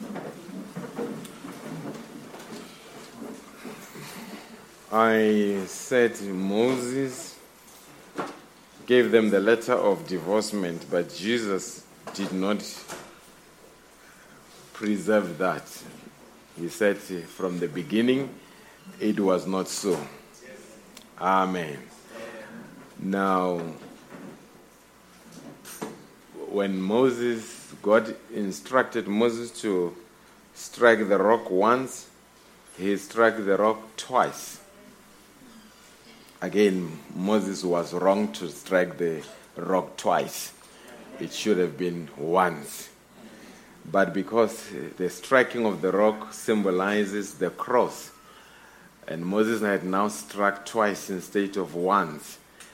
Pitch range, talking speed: 90-110 Hz, 85 wpm